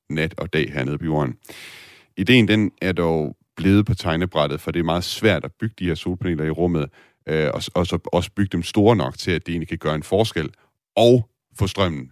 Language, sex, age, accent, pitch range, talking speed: Danish, male, 30-49, native, 85-110 Hz, 215 wpm